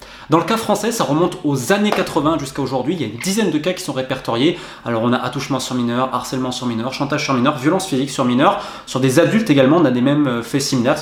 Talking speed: 255 wpm